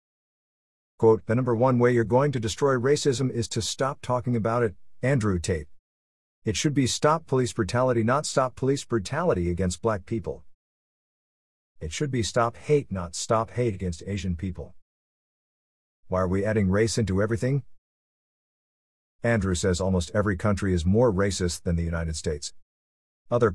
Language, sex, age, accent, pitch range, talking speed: English, male, 50-69, American, 90-125 Hz, 160 wpm